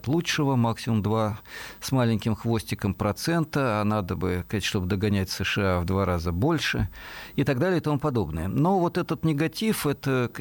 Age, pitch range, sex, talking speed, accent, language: 50-69, 100-130 Hz, male, 160 wpm, native, Russian